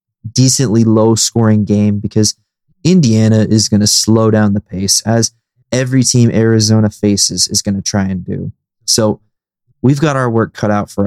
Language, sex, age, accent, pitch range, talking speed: English, male, 20-39, American, 105-125 Hz, 175 wpm